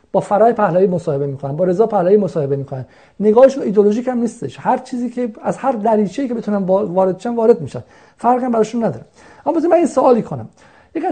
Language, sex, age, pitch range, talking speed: Persian, male, 50-69, 170-225 Hz, 195 wpm